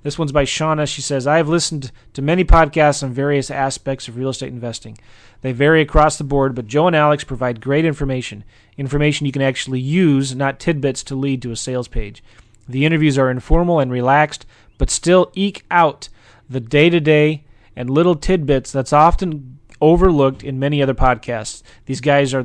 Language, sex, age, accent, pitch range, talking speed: English, male, 30-49, American, 120-150 Hz, 185 wpm